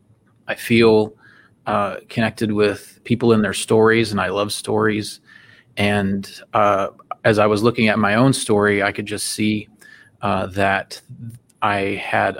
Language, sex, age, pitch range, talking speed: English, male, 30-49, 100-115 Hz, 150 wpm